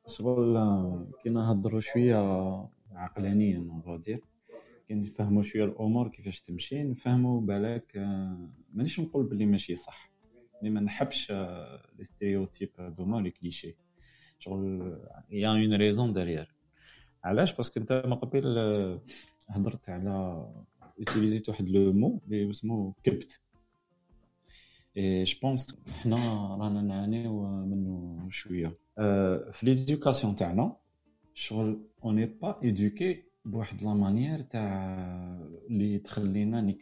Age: 30-49